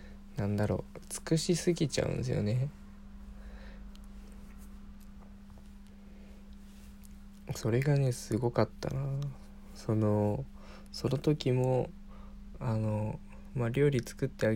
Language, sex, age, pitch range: Japanese, male, 20-39, 100-130 Hz